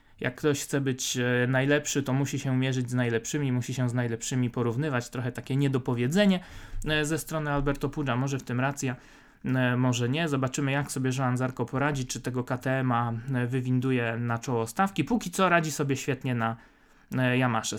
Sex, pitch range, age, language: male, 120-145 Hz, 20-39, Polish